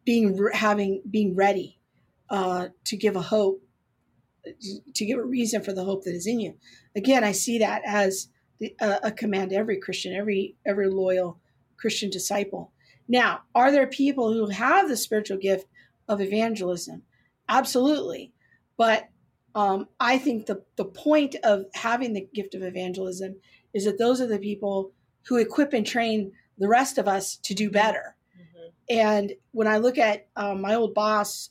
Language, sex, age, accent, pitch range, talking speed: English, female, 40-59, American, 195-230 Hz, 170 wpm